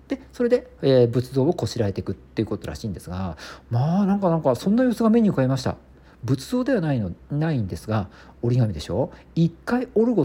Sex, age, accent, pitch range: male, 50-69, native, 105-170 Hz